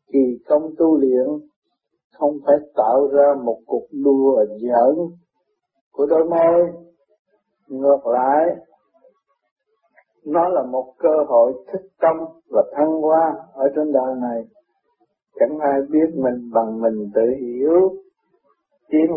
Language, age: Vietnamese, 60-79